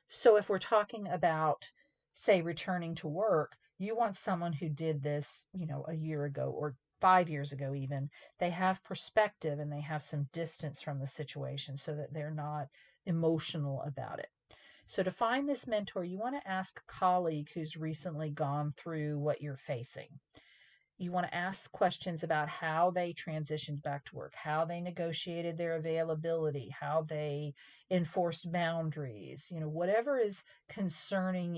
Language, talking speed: English, 165 wpm